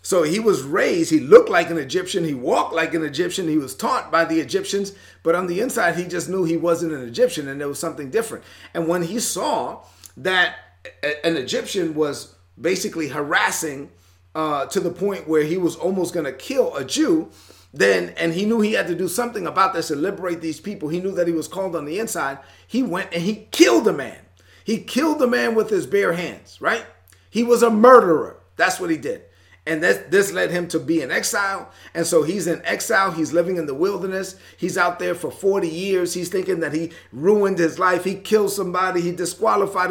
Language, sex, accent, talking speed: English, male, American, 215 wpm